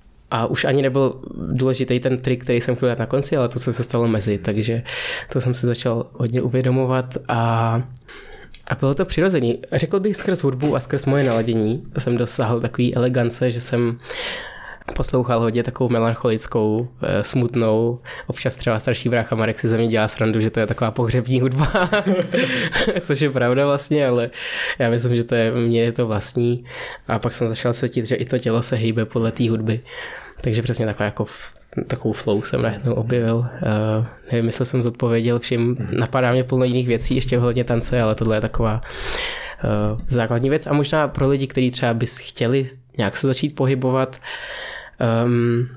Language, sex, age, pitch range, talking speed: Czech, male, 20-39, 115-130 Hz, 175 wpm